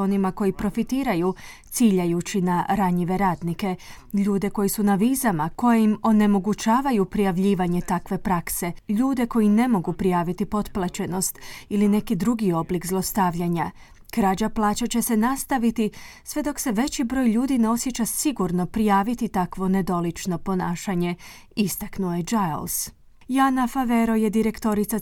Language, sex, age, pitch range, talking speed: Croatian, female, 30-49, 185-230 Hz, 125 wpm